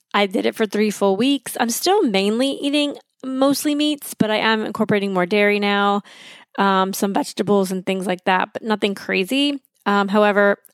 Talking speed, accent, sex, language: 180 wpm, American, female, English